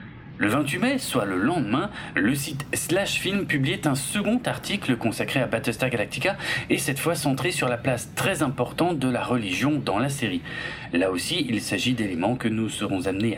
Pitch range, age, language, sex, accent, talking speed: 120-155 Hz, 40-59, French, male, French, 185 wpm